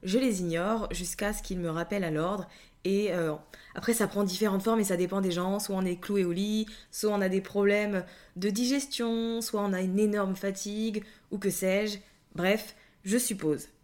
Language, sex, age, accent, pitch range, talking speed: French, female, 20-39, French, 180-220 Hz, 205 wpm